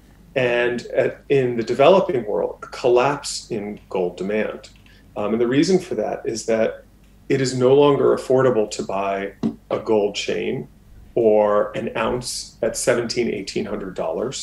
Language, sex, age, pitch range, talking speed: English, male, 40-59, 110-130 Hz, 150 wpm